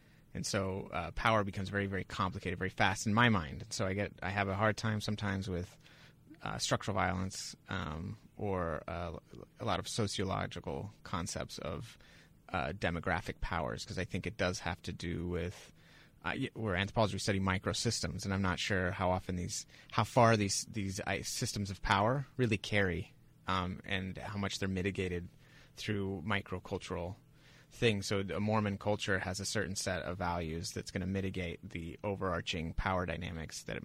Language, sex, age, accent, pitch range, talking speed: English, male, 30-49, American, 90-110 Hz, 175 wpm